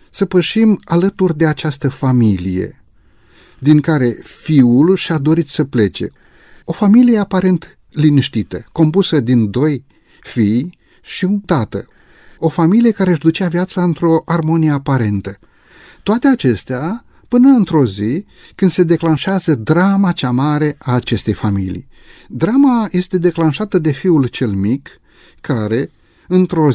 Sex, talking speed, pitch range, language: male, 125 wpm, 115-170 Hz, Romanian